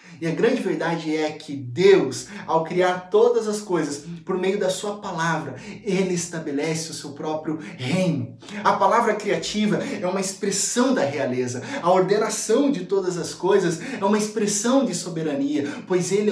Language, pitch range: Portuguese, 175-215 Hz